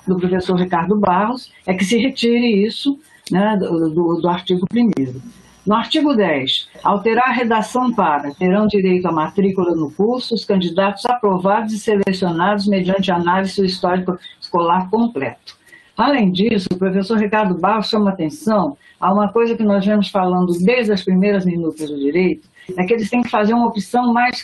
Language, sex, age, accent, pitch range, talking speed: Portuguese, female, 60-79, Brazilian, 185-235 Hz, 165 wpm